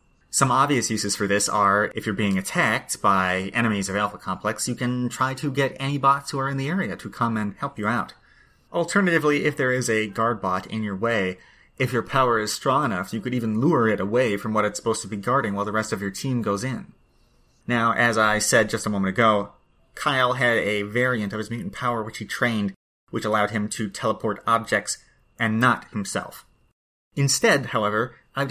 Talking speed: 215 wpm